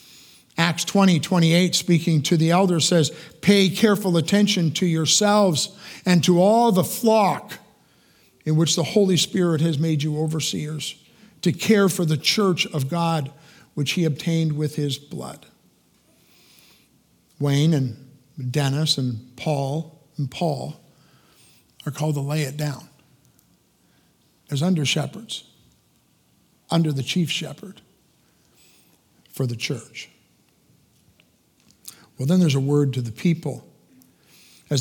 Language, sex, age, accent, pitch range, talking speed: English, male, 50-69, American, 145-175 Hz, 120 wpm